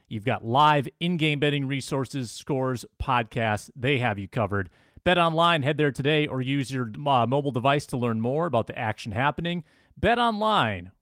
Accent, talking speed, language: American, 175 wpm, English